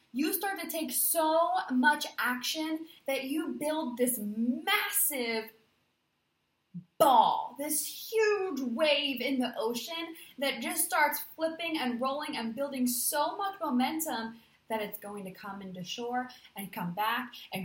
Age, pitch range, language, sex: 20-39, 205-290 Hz, English, female